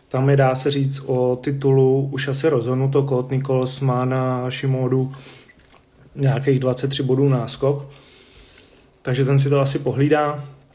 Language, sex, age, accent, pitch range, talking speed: Czech, male, 30-49, native, 130-145 Hz, 135 wpm